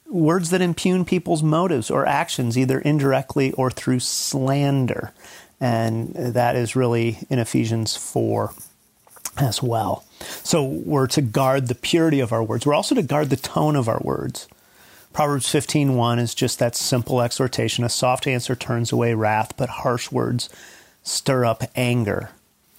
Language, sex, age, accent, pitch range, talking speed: English, male, 40-59, American, 120-135 Hz, 155 wpm